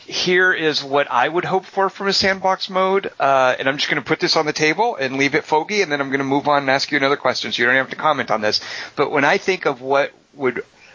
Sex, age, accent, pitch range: male, 40-59, American, 125-160 Hz